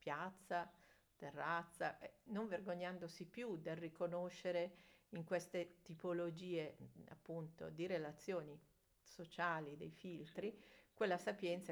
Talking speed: 90 wpm